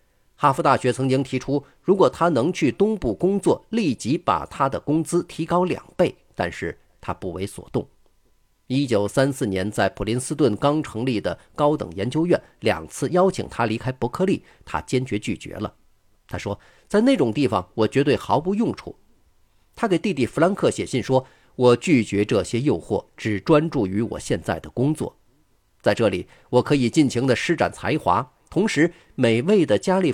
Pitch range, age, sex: 105-160 Hz, 50-69, male